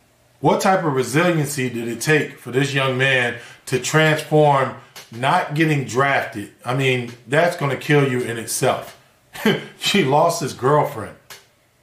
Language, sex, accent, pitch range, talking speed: English, male, American, 125-145 Hz, 145 wpm